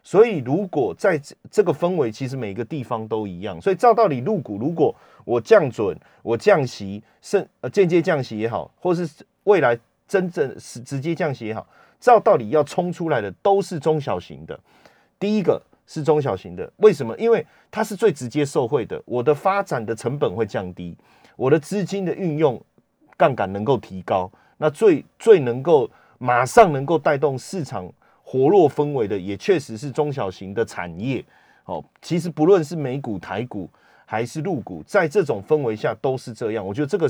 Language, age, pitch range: Chinese, 30-49, 115-185 Hz